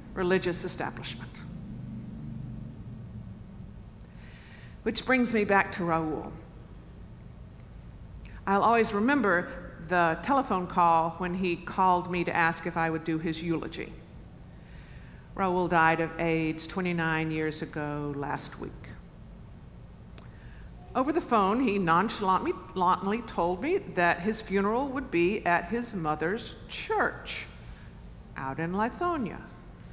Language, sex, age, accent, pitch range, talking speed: English, female, 50-69, American, 170-215 Hz, 110 wpm